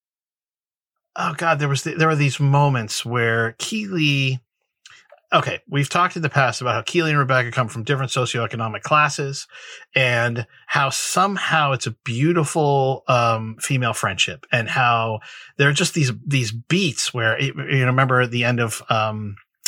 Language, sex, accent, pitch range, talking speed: English, male, American, 115-145 Hz, 165 wpm